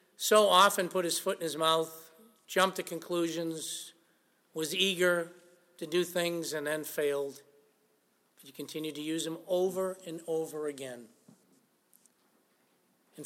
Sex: male